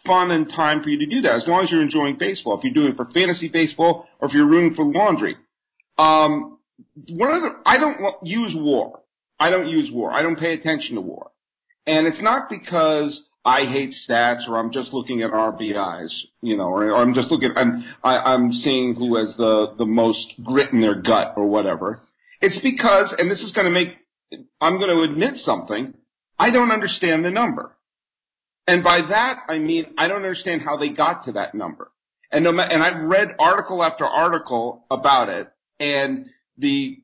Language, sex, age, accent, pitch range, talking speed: English, male, 50-69, American, 145-220 Hz, 200 wpm